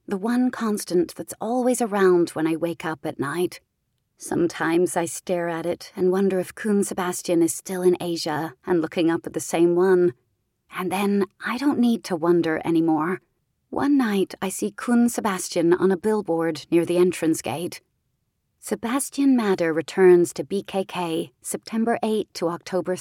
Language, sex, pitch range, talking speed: English, female, 165-190 Hz, 165 wpm